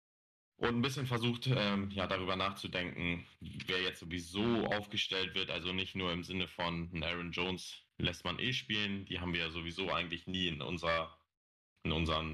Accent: German